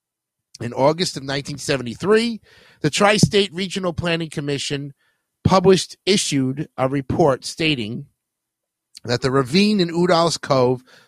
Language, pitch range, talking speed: English, 125-160 Hz, 110 wpm